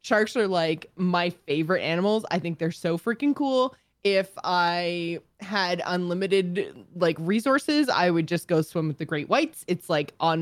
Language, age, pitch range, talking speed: English, 20-39, 165-250 Hz, 175 wpm